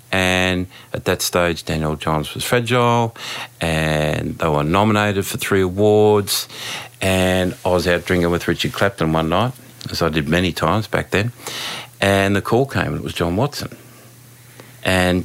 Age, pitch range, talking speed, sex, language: 50-69, 85-115 Hz, 165 wpm, male, English